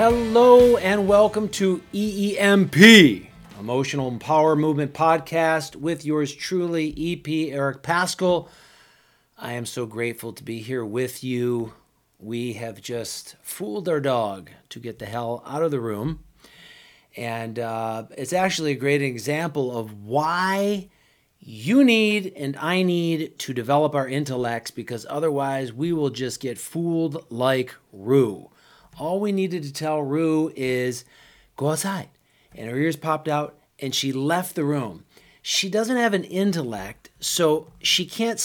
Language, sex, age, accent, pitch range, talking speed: English, male, 40-59, American, 135-190 Hz, 145 wpm